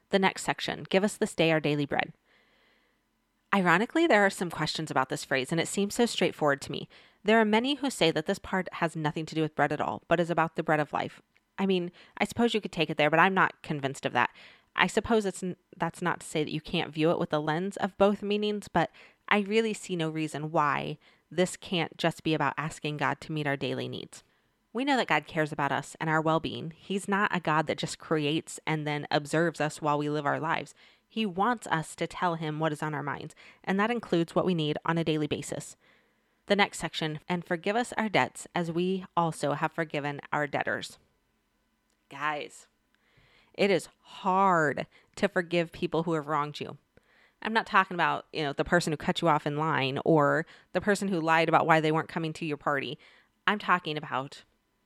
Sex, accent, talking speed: female, American, 220 wpm